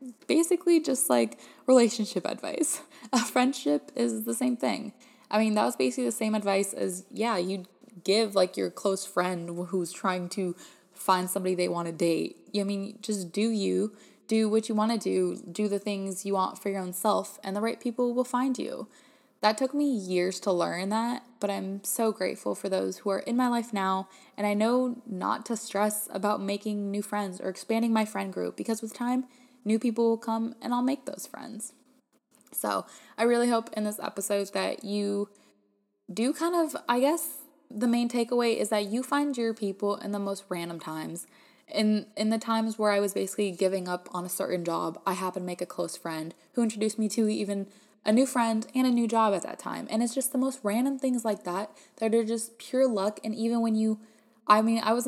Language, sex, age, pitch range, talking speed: English, female, 20-39, 190-235 Hz, 210 wpm